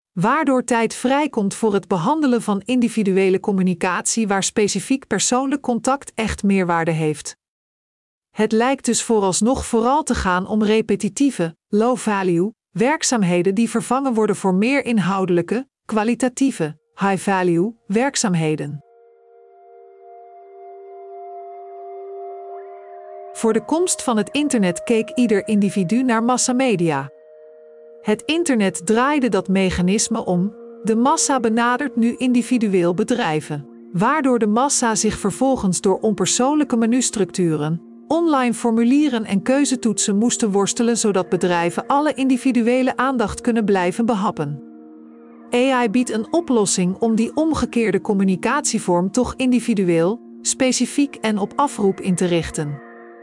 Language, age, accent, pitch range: Dutch, 50-69, Dutch, 175-245 Hz